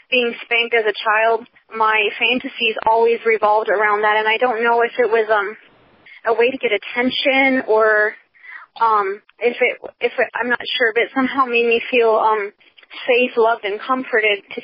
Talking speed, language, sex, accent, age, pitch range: 185 wpm, English, female, American, 20-39, 220-250 Hz